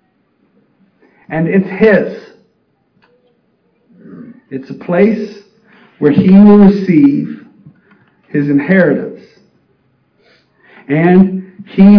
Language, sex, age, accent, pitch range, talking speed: English, male, 40-59, American, 140-205 Hz, 70 wpm